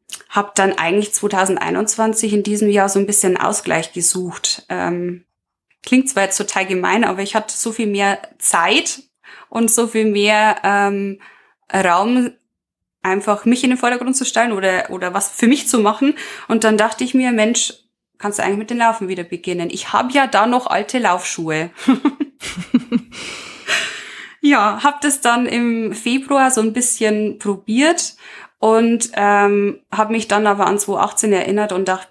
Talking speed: 165 wpm